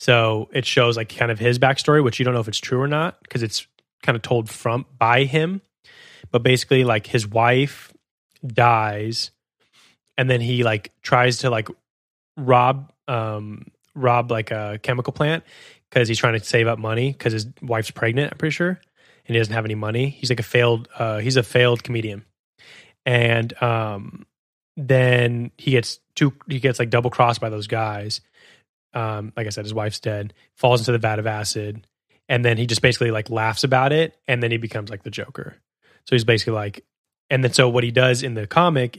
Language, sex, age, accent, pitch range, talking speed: English, male, 20-39, American, 110-130 Hz, 200 wpm